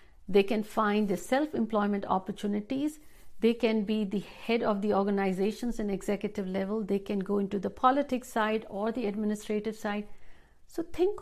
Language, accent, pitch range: Hindi, native, 200-245 Hz